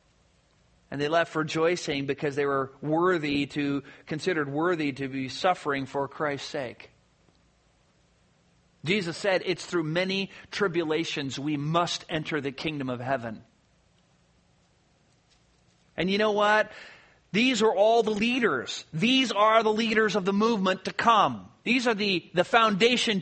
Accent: American